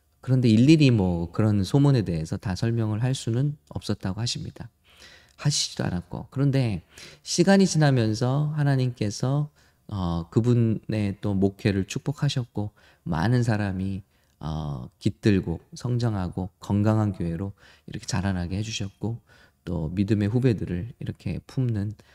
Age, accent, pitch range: 20-39, Korean, 95-125 Hz